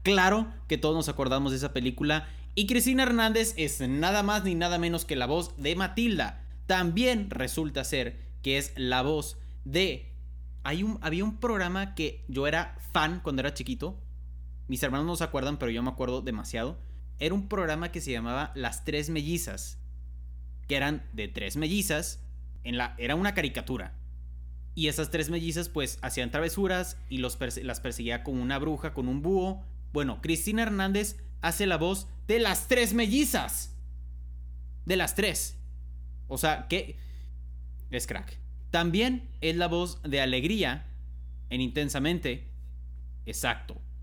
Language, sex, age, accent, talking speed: Spanish, male, 30-49, Mexican, 150 wpm